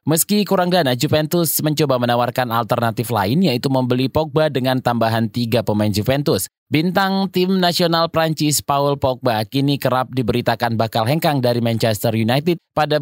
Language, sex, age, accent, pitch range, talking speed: Indonesian, male, 20-39, native, 120-160 Hz, 145 wpm